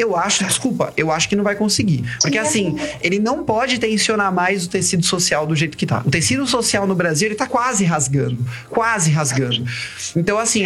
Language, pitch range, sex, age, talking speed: Portuguese, 165-225 Hz, male, 20-39, 205 wpm